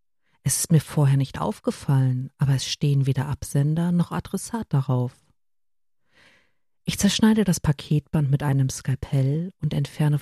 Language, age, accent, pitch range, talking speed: German, 50-69, German, 130-150 Hz, 135 wpm